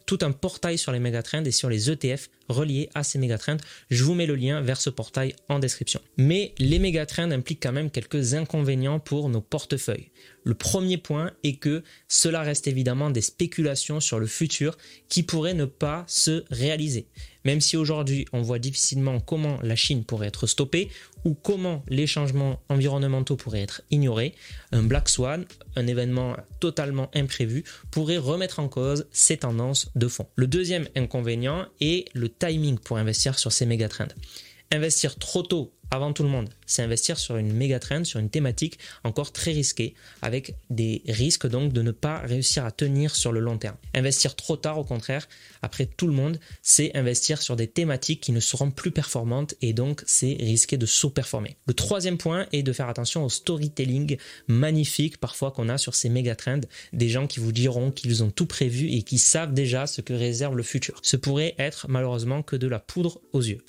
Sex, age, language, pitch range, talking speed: male, 20-39, French, 125-155 Hz, 190 wpm